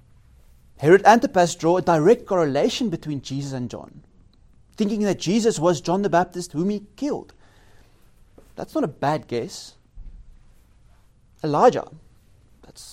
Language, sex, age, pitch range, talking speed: English, male, 30-49, 140-190 Hz, 125 wpm